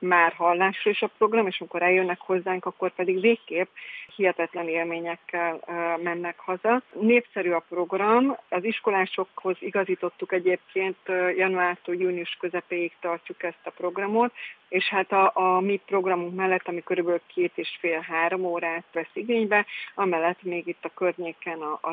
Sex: female